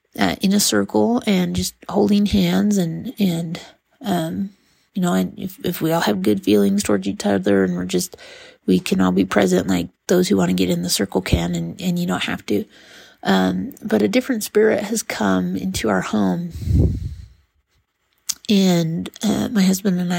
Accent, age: American, 30-49